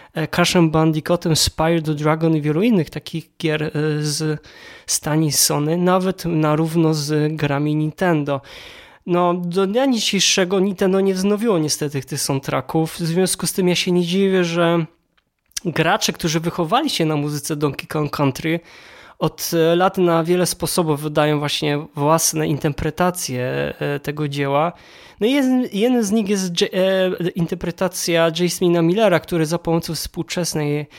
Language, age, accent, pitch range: Polish, 20-39, native, 150-175 Hz